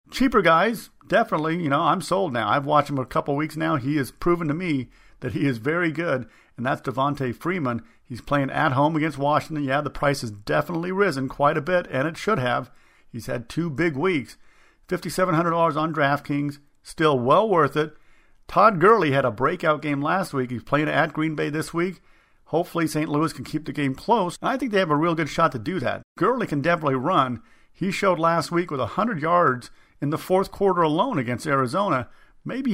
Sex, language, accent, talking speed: male, English, American, 210 wpm